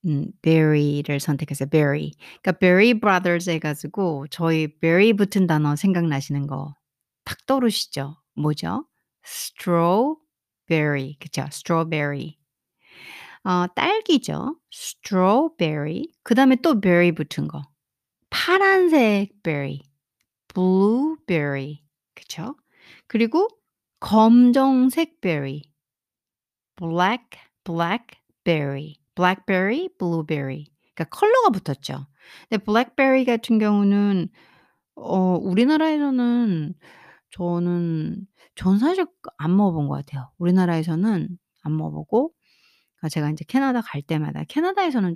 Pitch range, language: 150-225 Hz, Korean